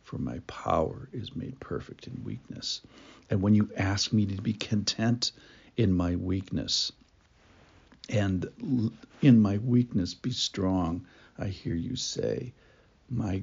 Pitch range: 90-110 Hz